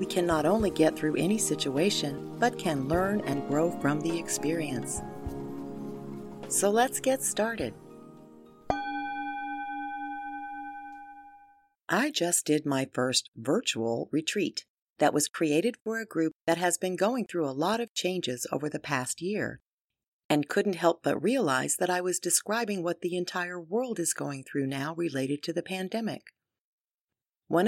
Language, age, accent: English, 40-59, American